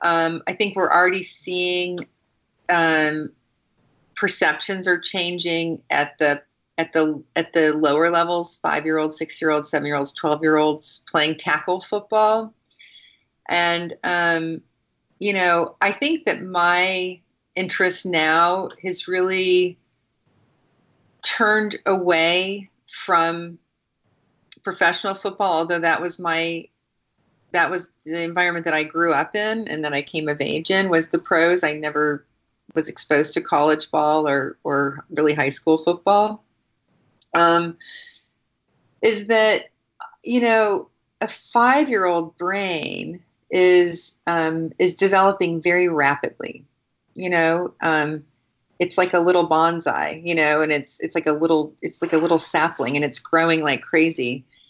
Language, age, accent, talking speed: English, 40-59, American, 140 wpm